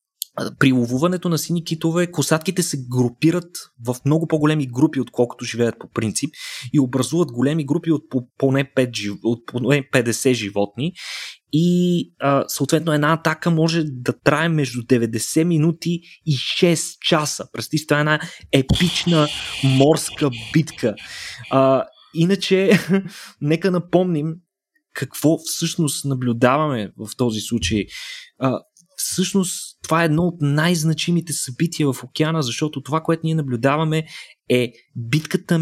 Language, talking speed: Bulgarian, 120 wpm